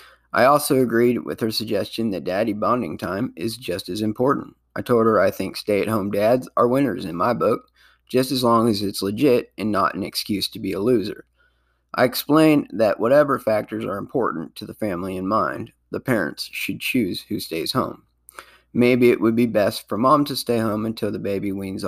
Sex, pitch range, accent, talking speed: male, 105-130 Hz, American, 200 wpm